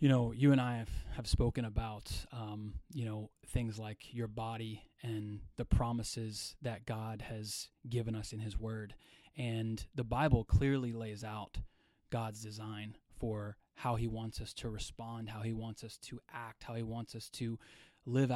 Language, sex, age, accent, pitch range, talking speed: English, male, 20-39, American, 110-130 Hz, 175 wpm